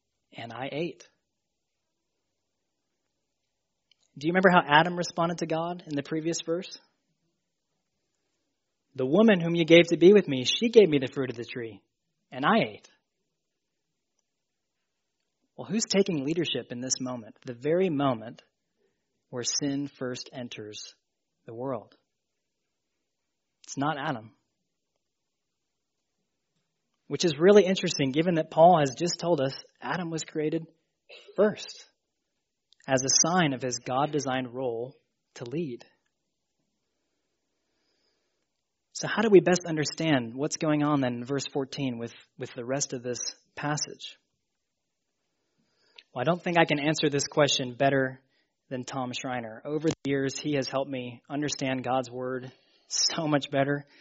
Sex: male